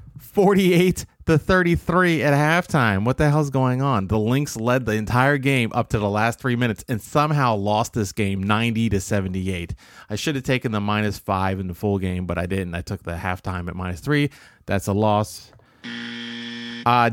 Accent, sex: American, male